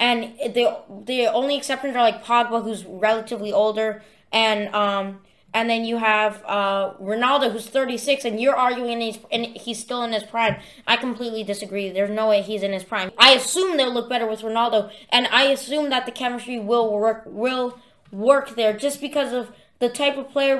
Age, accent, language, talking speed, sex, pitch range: 20-39, American, English, 190 wpm, female, 220-265 Hz